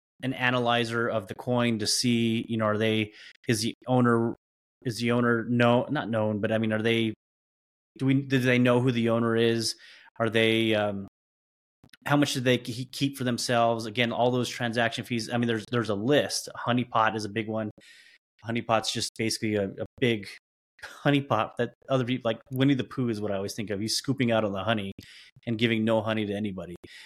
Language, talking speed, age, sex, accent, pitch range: English, 215 wpm, 30-49, male, American, 105-125 Hz